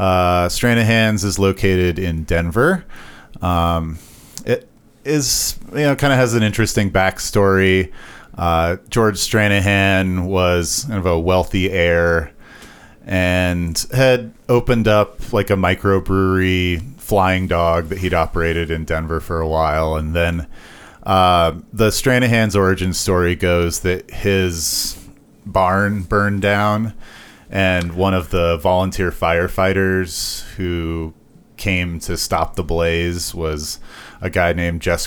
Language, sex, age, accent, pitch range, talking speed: English, male, 30-49, American, 85-100 Hz, 125 wpm